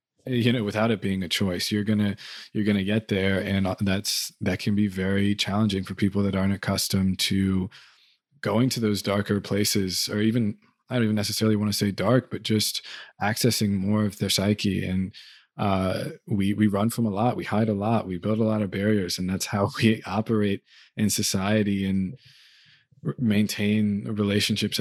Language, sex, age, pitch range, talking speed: English, male, 20-39, 95-105 Hz, 190 wpm